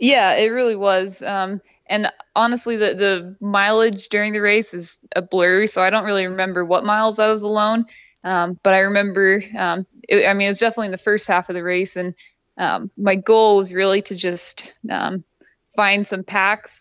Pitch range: 185-215 Hz